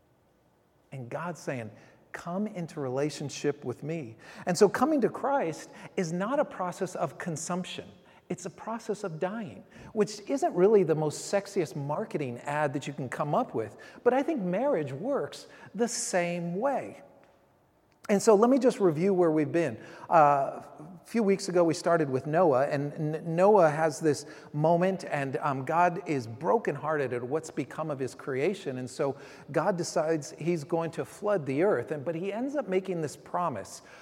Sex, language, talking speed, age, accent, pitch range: male, English, 175 wpm, 40-59, American, 150-195 Hz